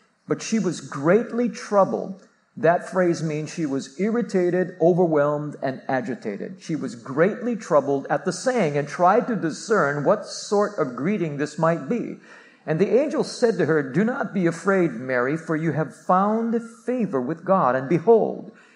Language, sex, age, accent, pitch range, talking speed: English, male, 50-69, American, 155-210 Hz, 170 wpm